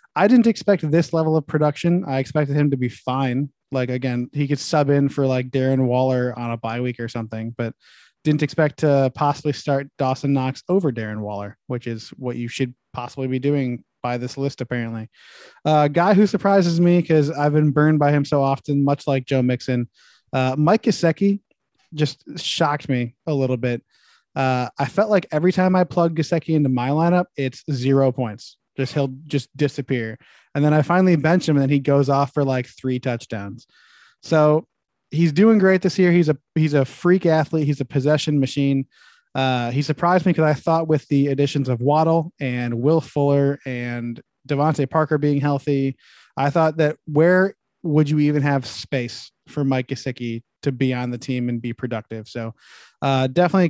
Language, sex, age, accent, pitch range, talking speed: English, male, 20-39, American, 130-155 Hz, 190 wpm